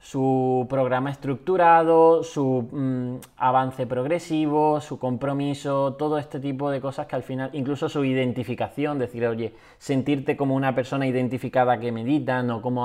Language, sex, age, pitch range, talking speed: Spanish, male, 20-39, 125-145 Hz, 140 wpm